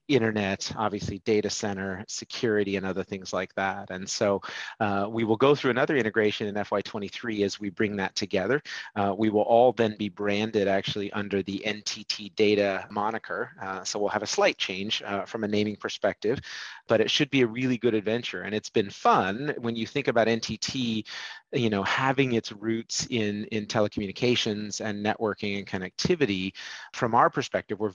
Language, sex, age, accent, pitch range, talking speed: English, male, 30-49, American, 100-115 Hz, 180 wpm